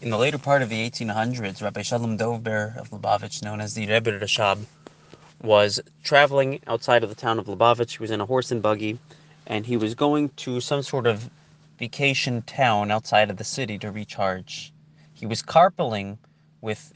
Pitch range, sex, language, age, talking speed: 105-145 Hz, male, English, 30-49, 185 wpm